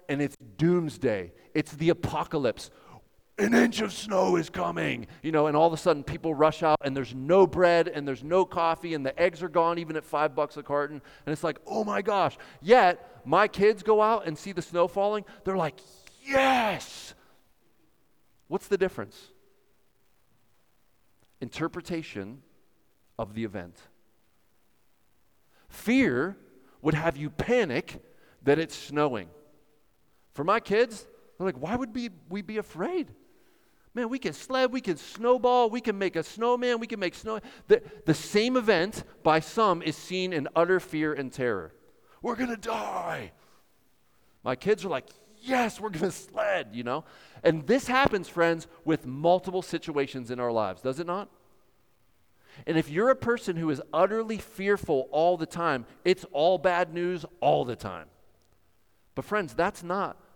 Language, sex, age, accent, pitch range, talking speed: English, male, 40-59, American, 145-210 Hz, 165 wpm